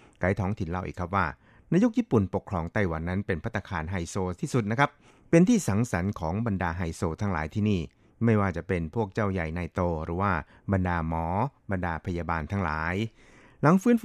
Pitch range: 90-110 Hz